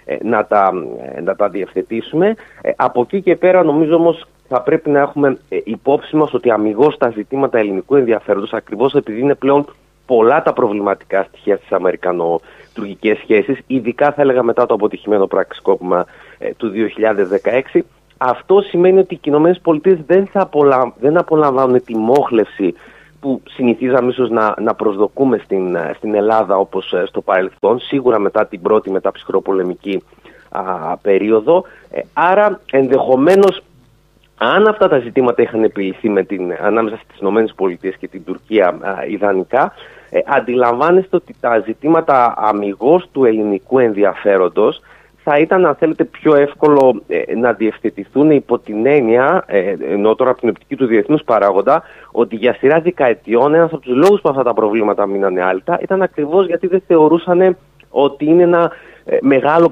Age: 30-49